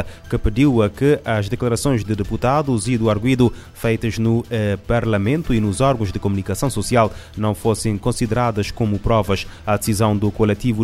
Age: 20-39